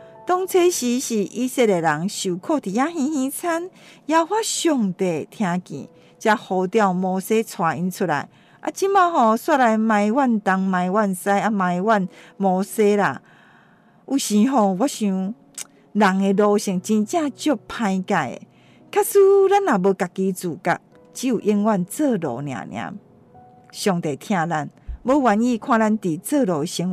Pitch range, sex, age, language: 180-265 Hz, female, 50-69, Chinese